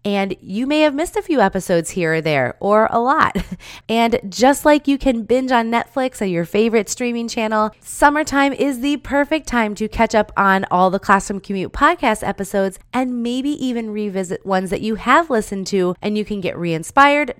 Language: English